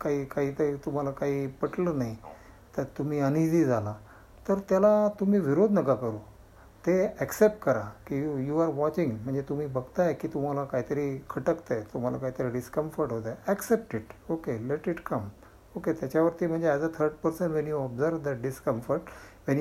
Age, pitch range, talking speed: 60-79, 125-170 Hz, 170 wpm